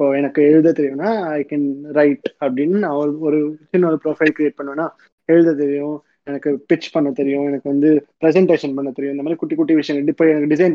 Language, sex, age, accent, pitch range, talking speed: Tamil, male, 20-39, native, 145-170 Hz, 175 wpm